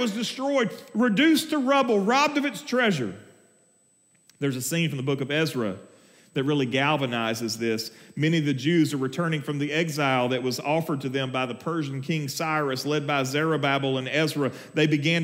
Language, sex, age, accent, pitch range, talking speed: English, male, 40-59, American, 110-170 Hz, 185 wpm